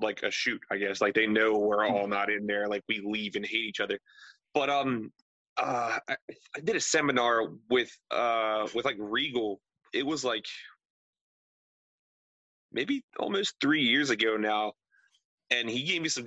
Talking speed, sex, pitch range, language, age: 175 wpm, male, 105-130 Hz, English, 30-49